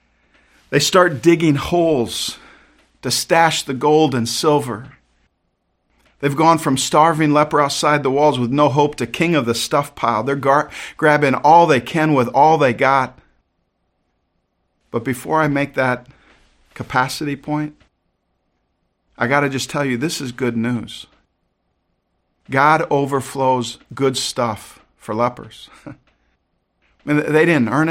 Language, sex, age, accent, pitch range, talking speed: English, male, 50-69, American, 130-165 Hz, 135 wpm